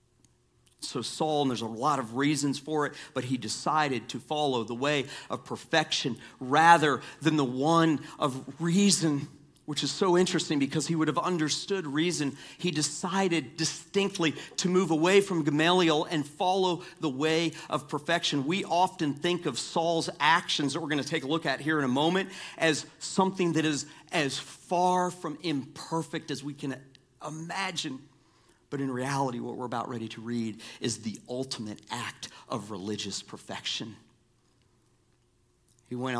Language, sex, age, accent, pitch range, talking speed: English, male, 40-59, American, 120-160 Hz, 160 wpm